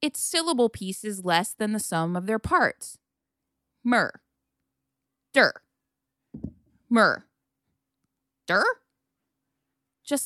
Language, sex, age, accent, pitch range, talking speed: English, female, 20-39, American, 205-305 Hz, 90 wpm